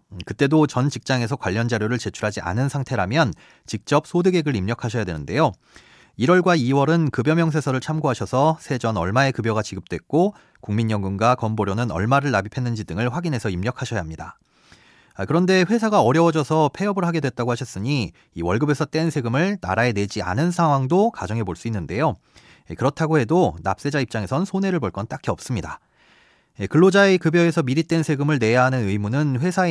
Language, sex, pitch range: Korean, male, 110-155 Hz